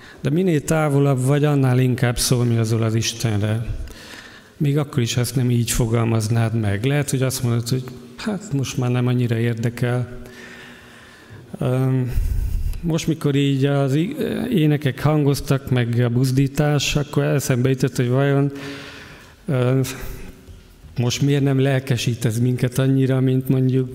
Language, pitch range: Hungarian, 115-145 Hz